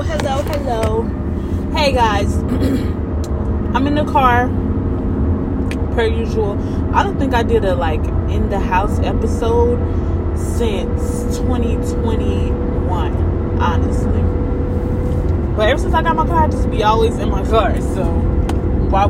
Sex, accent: female, American